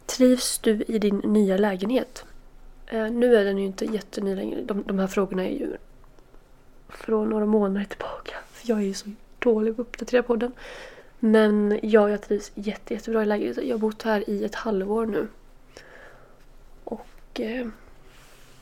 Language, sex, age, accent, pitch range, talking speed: Swedish, female, 20-39, native, 210-235 Hz, 170 wpm